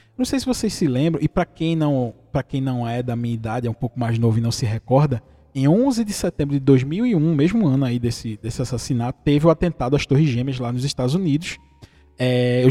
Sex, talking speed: male, 215 wpm